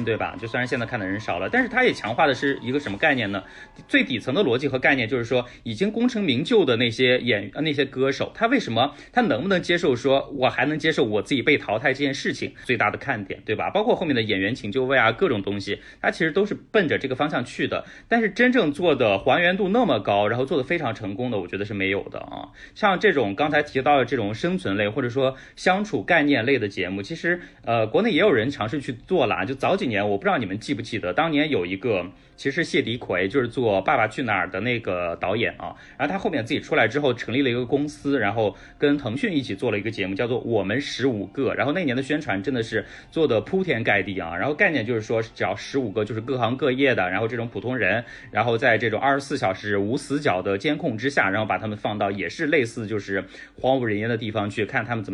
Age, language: 30-49, Chinese